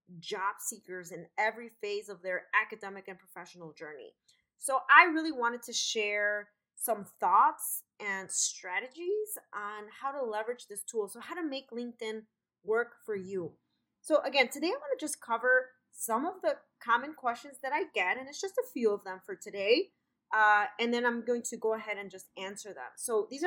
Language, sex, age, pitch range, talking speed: English, female, 20-39, 205-280 Hz, 190 wpm